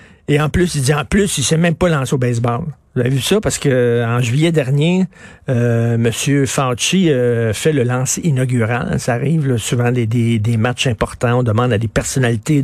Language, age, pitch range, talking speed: French, 50-69, 130-160 Hz, 220 wpm